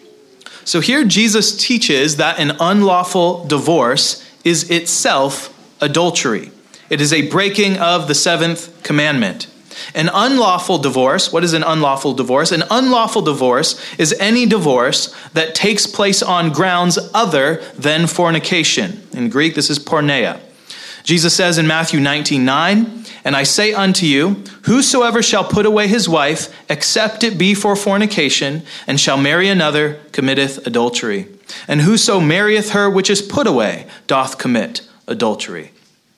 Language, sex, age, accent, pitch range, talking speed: English, male, 30-49, American, 150-205 Hz, 140 wpm